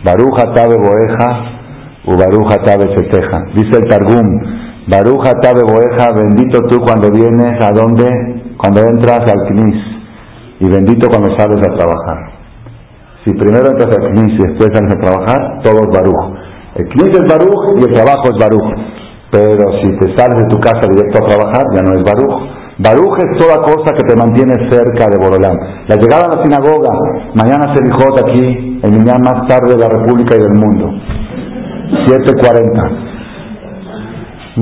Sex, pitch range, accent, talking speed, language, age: male, 100-125 Hz, Spanish, 165 wpm, Spanish, 50-69